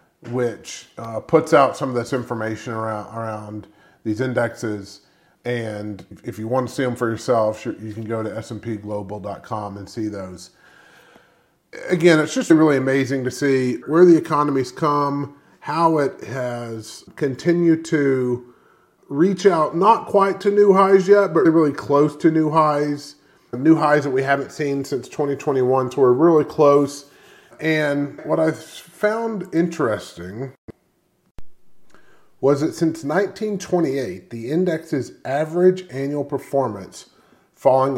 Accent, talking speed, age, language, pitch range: American, 135 wpm, 30-49, English, 115-155 Hz